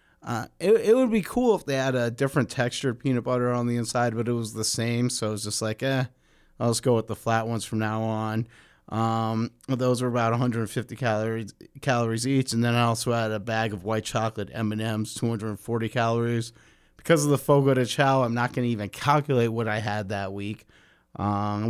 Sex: male